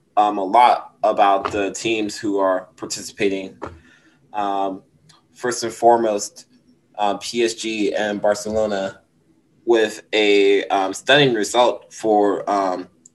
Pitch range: 105-135 Hz